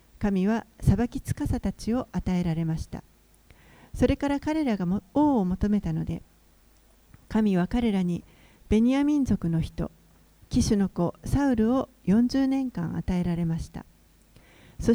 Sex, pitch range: female, 175-240 Hz